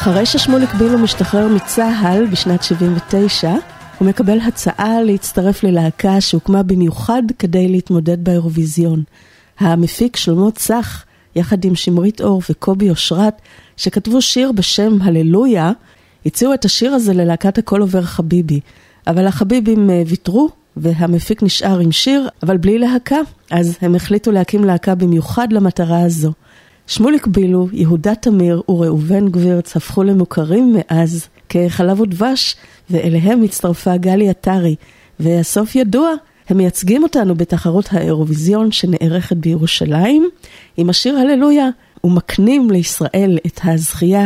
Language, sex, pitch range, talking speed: Hebrew, female, 170-220 Hz, 120 wpm